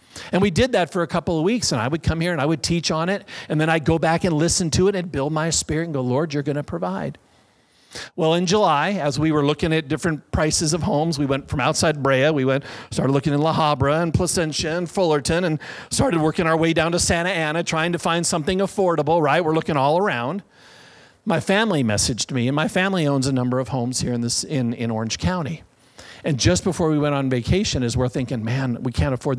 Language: English